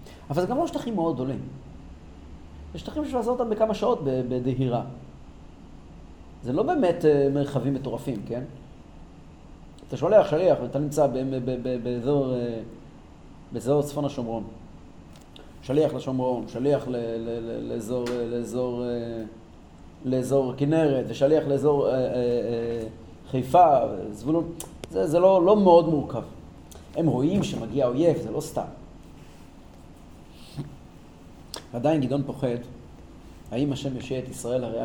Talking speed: 105 wpm